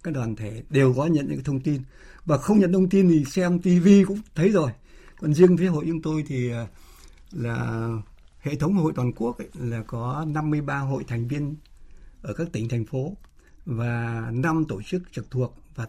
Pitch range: 120-160 Hz